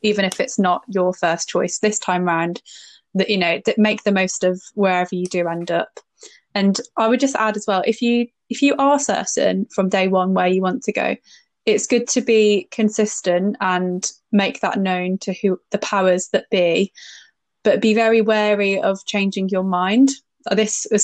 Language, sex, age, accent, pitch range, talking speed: English, female, 10-29, British, 185-215 Hz, 195 wpm